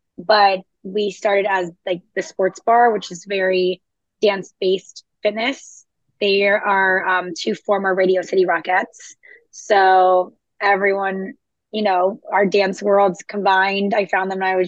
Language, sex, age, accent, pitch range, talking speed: English, female, 20-39, American, 190-215 Hz, 145 wpm